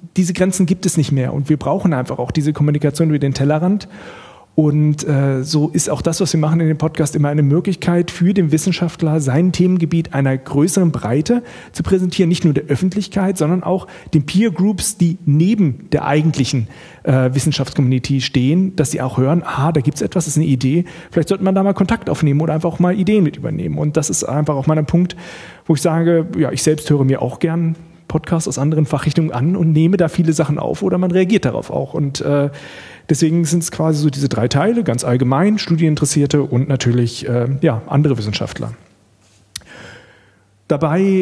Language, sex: German, male